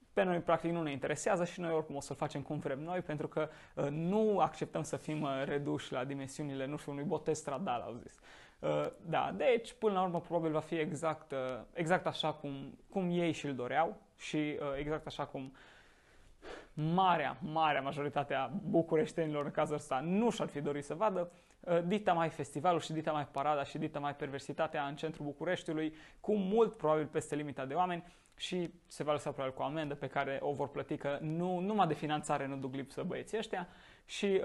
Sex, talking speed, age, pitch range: male, 200 wpm, 20-39, 145-185 Hz